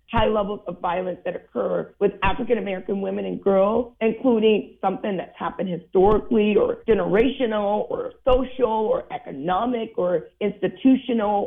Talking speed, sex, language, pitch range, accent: 125 wpm, female, English, 185-235 Hz, American